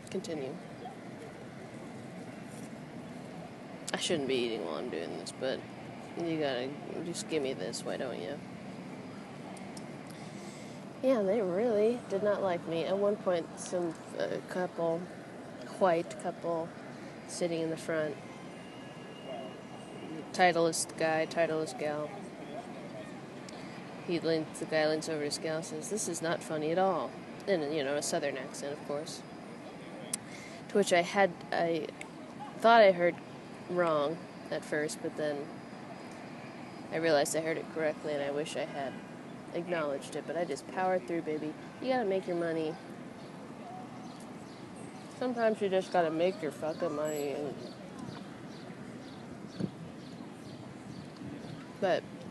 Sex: female